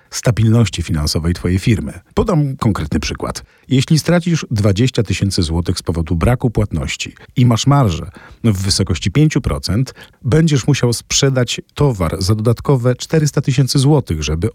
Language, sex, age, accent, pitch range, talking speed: Polish, male, 40-59, native, 100-140 Hz, 130 wpm